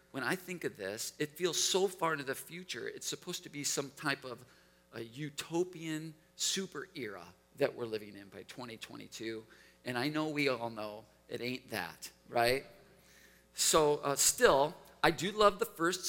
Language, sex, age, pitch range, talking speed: English, male, 40-59, 145-175 Hz, 175 wpm